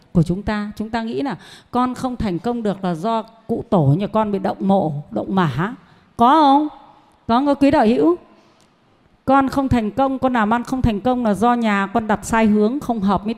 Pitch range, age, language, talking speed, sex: 195-275 Hz, 30-49, Vietnamese, 225 wpm, female